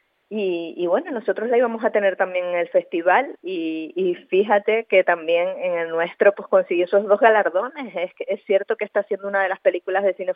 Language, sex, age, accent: Spanish, female, 30-49, American